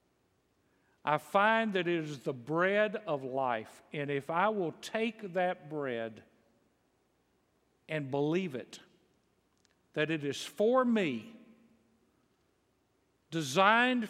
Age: 50-69